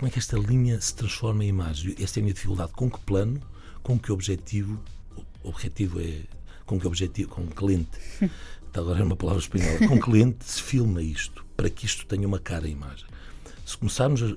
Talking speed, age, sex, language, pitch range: 210 wpm, 60-79, male, Portuguese, 95-130 Hz